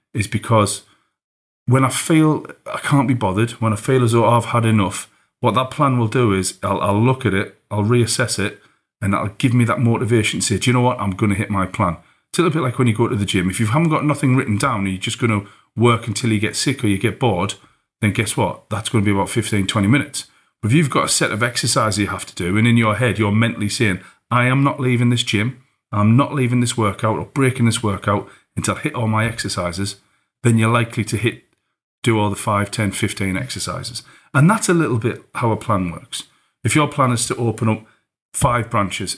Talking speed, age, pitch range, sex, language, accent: 250 wpm, 40-59, 105-125 Hz, male, English, British